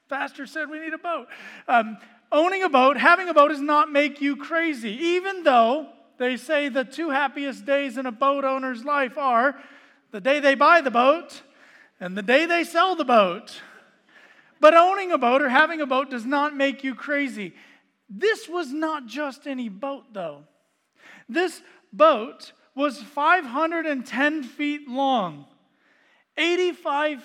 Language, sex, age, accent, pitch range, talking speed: English, male, 40-59, American, 240-310 Hz, 160 wpm